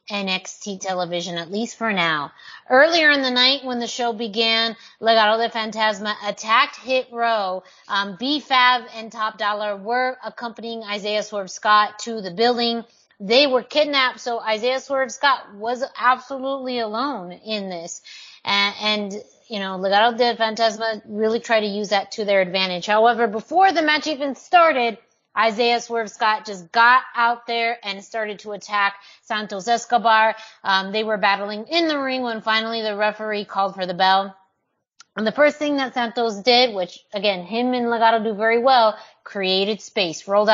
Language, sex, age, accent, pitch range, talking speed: English, female, 30-49, American, 200-245 Hz, 165 wpm